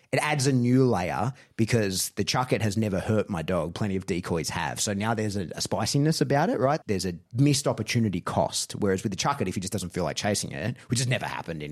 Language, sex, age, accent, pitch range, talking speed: English, male, 30-49, Australian, 95-125 Hz, 245 wpm